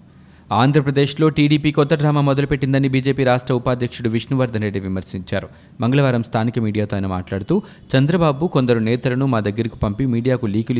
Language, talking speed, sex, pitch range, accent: Telugu, 135 wpm, male, 110-135 Hz, native